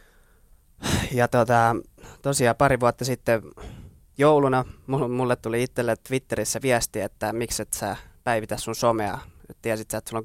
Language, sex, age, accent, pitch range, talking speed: Finnish, male, 20-39, native, 110-125 Hz, 140 wpm